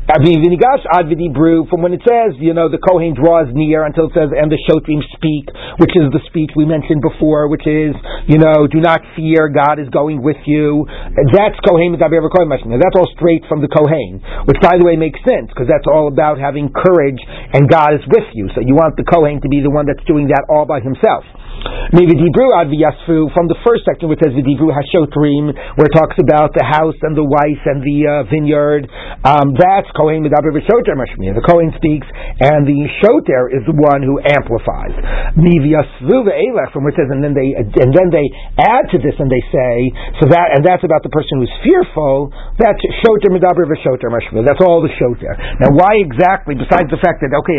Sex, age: male, 40-59